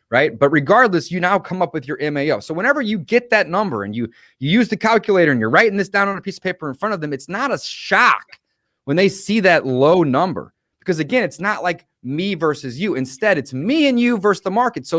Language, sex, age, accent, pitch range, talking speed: English, male, 30-49, American, 150-210 Hz, 260 wpm